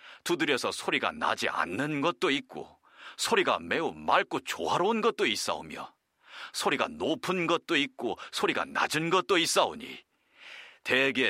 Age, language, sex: 40-59, Korean, male